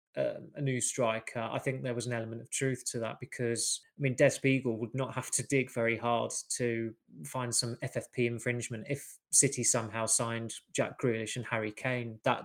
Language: English